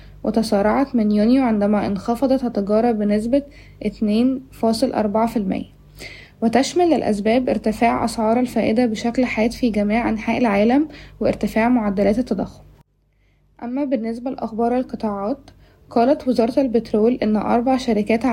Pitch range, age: 220-250 Hz, 20-39